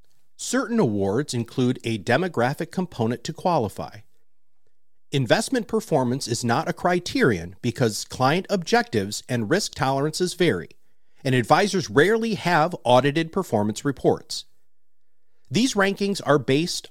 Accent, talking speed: American, 115 wpm